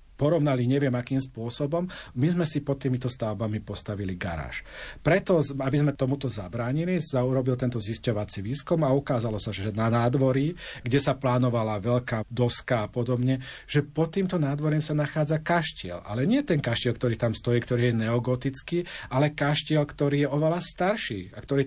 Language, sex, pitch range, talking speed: Slovak, male, 120-145 Hz, 165 wpm